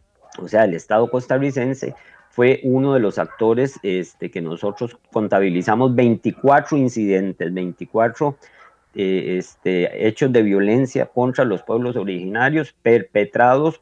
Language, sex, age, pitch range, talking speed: Spanish, male, 40-59, 95-130 Hz, 110 wpm